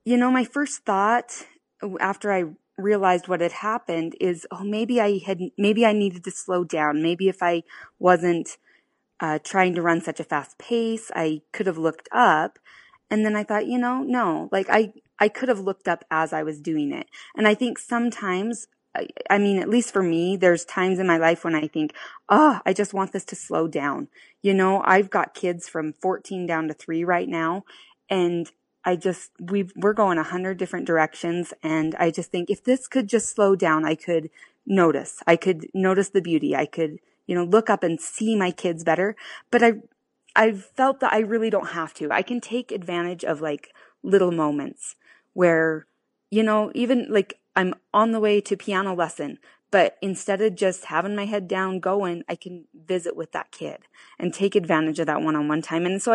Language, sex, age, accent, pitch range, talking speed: English, female, 20-39, American, 170-215 Hz, 205 wpm